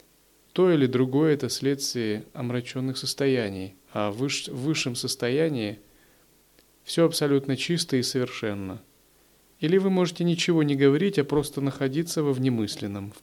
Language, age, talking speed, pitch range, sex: Russian, 30-49, 125 wpm, 125-155 Hz, male